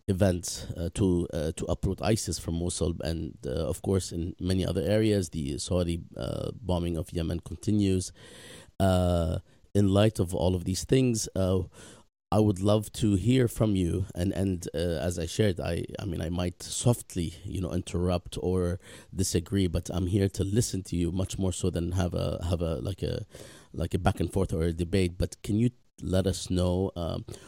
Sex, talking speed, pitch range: male, 190 wpm, 90-105 Hz